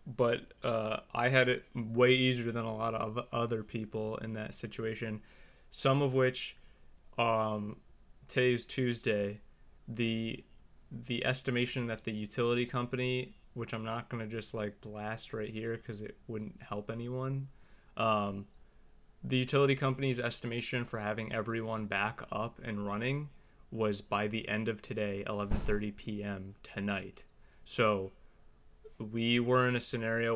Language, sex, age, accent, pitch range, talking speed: English, male, 20-39, American, 105-120 Hz, 140 wpm